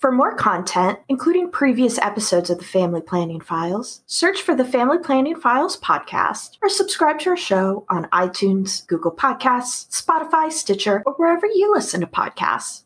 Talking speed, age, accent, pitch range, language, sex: 165 wpm, 30-49, American, 180-270 Hz, English, female